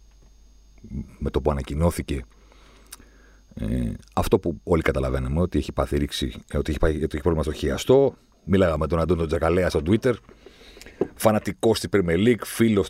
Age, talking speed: 40-59, 150 wpm